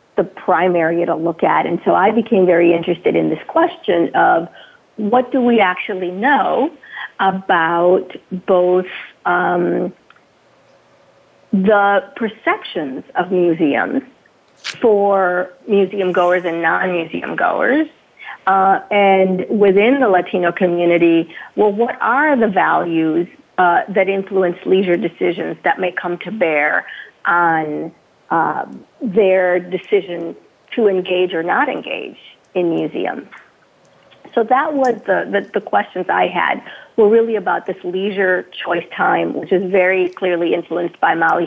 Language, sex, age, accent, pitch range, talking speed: English, female, 50-69, American, 175-215 Hz, 125 wpm